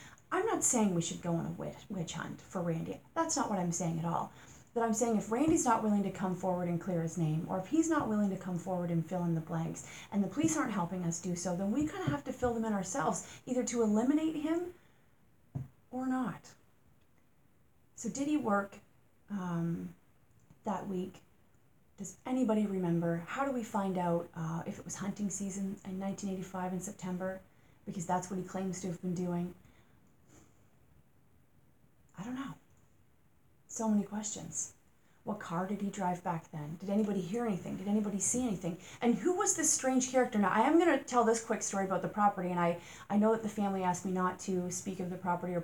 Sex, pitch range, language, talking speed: female, 180-225 Hz, English, 210 wpm